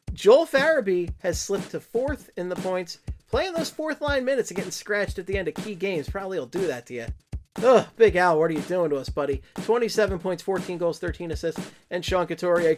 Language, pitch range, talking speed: English, 150-210 Hz, 225 wpm